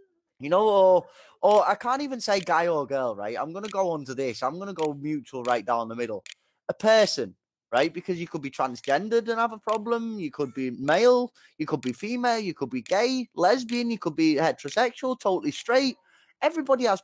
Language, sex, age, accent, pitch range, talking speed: English, male, 20-39, British, 135-215 Hz, 215 wpm